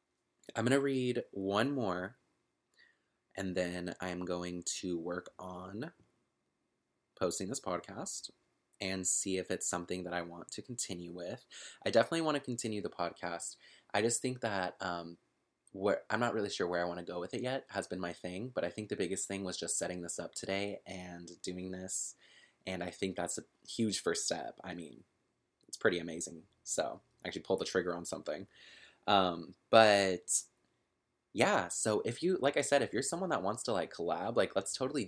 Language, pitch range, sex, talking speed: English, 90-110 Hz, male, 190 wpm